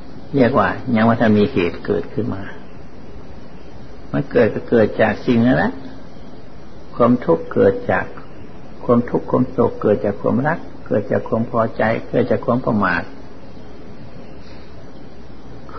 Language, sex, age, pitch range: Thai, male, 60-79, 105-130 Hz